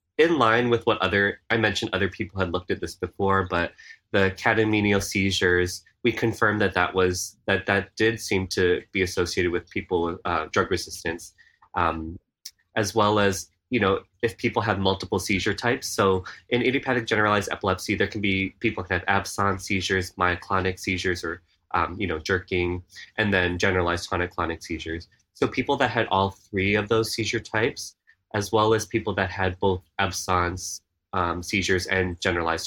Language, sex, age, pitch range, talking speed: English, male, 20-39, 90-105 Hz, 175 wpm